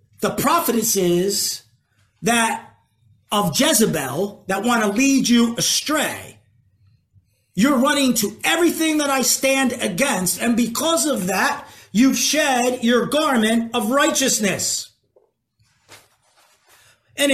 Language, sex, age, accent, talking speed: English, male, 40-59, American, 100 wpm